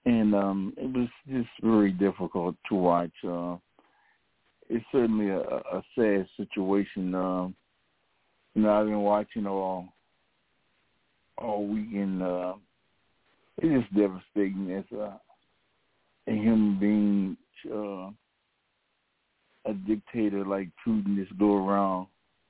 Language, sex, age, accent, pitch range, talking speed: English, male, 60-79, American, 95-110 Hz, 110 wpm